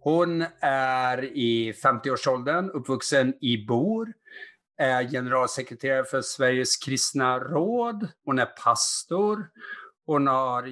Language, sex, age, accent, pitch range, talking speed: Swedish, male, 50-69, Norwegian, 125-160 Hz, 100 wpm